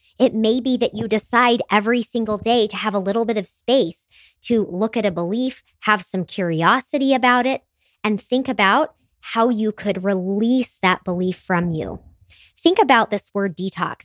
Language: English